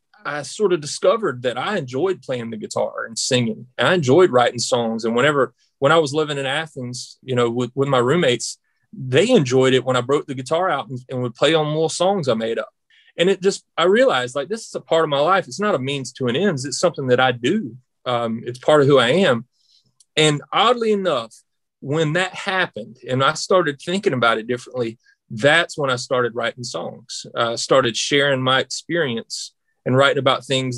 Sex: male